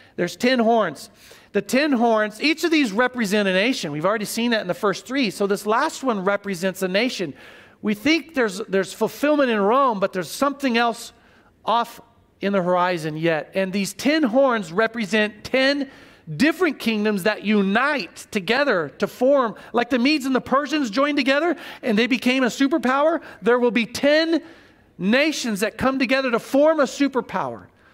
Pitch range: 190-255 Hz